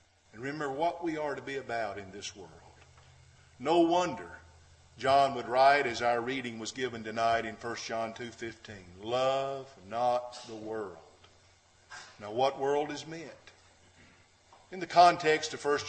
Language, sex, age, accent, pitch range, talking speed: English, male, 50-69, American, 105-145 Hz, 150 wpm